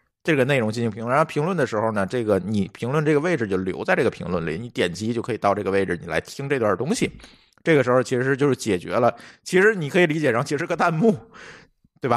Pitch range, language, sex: 105-155 Hz, Chinese, male